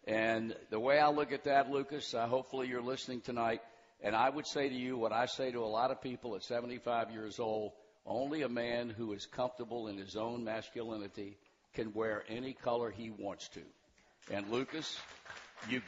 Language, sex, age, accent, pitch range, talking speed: English, male, 60-79, American, 120-145 Hz, 195 wpm